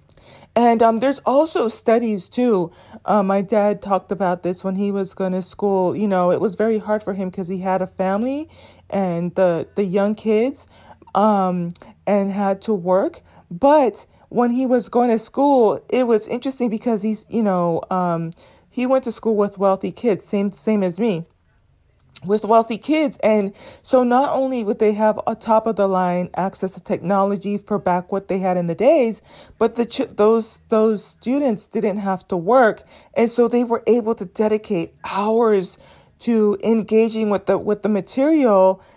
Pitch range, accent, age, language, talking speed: 190-230 Hz, American, 30-49, English, 180 wpm